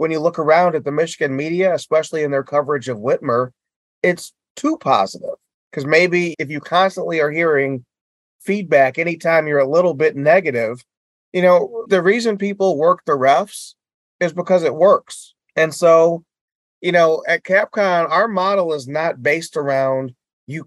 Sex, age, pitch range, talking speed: male, 30-49, 140-185 Hz, 165 wpm